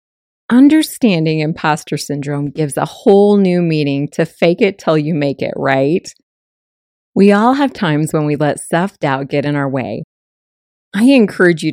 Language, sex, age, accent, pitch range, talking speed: English, female, 30-49, American, 145-195 Hz, 160 wpm